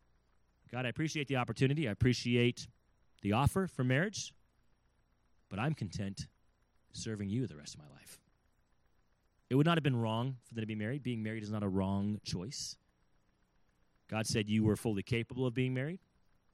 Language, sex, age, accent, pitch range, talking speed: English, male, 30-49, American, 105-135 Hz, 175 wpm